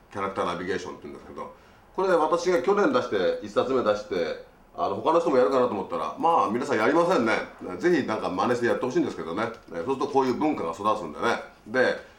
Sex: male